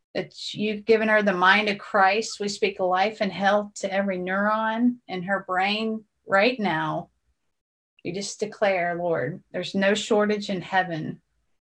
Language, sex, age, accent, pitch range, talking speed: English, female, 30-49, American, 185-215 Hz, 150 wpm